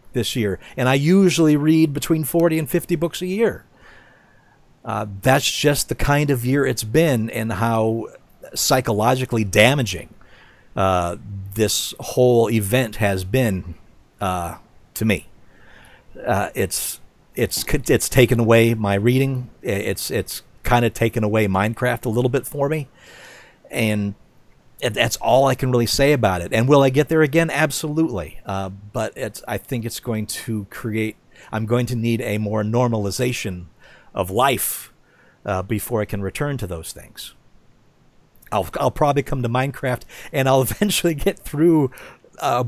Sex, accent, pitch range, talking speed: male, American, 105-135 Hz, 155 wpm